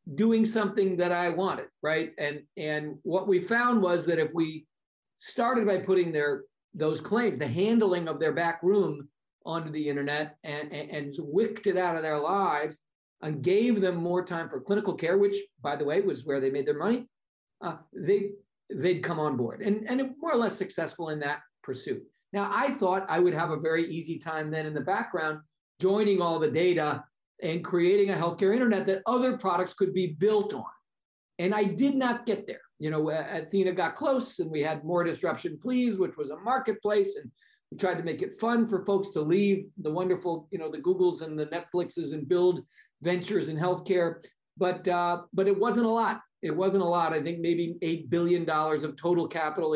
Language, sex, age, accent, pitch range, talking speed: English, male, 50-69, American, 155-200 Hz, 200 wpm